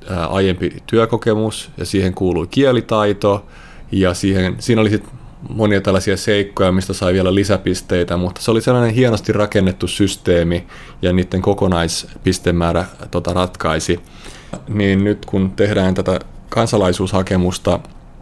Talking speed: 120 wpm